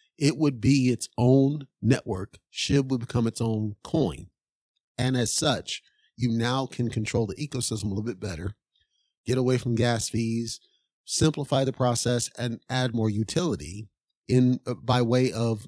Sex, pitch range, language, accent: male, 110-135 Hz, English, American